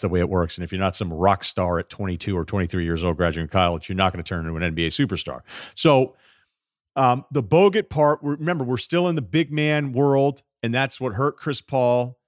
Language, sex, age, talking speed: English, male, 40-59, 230 wpm